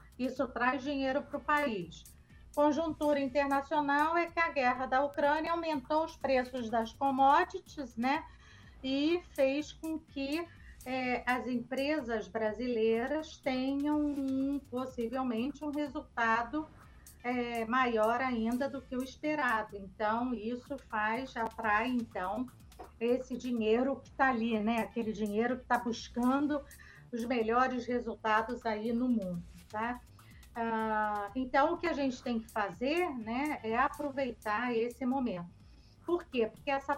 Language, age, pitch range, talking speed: Portuguese, 40-59, 225-275 Hz, 120 wpm